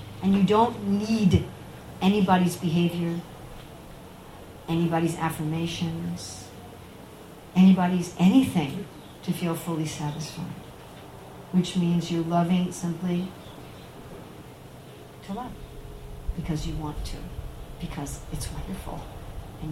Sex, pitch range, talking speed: female, 150-175 Hz, 90 wpm